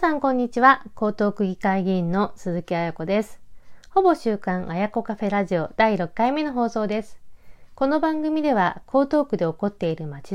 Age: 40-59